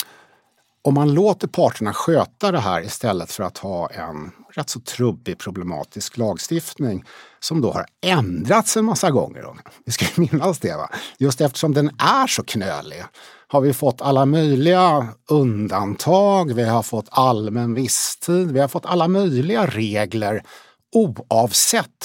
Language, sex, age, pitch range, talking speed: Swedish, male, 60-79, 115-180 Hz, 145 wpm